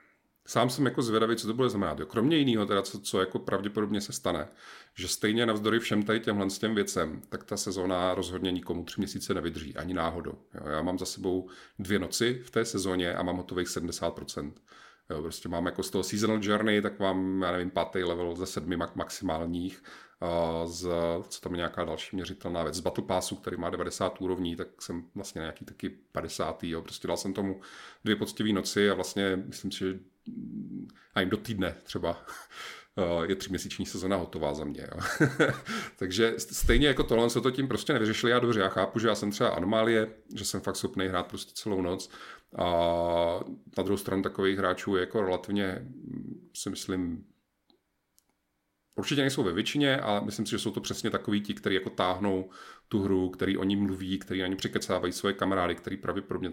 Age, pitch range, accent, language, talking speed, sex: 40-59, 90-105 Hz, native, Czech, 190 wpm, male